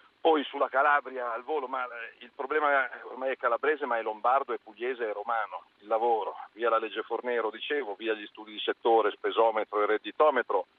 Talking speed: 185 wpm